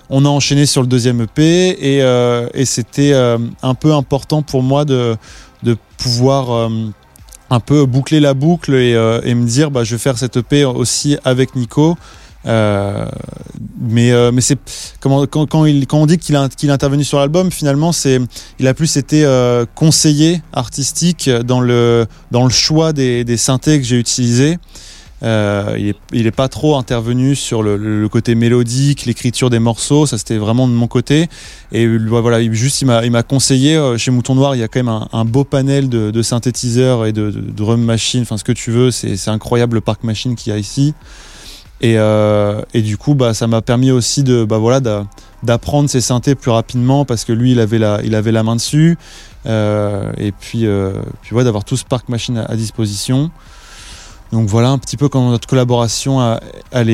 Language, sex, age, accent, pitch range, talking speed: French, male, 20-39, French, 115-135 Hz, 210 wpm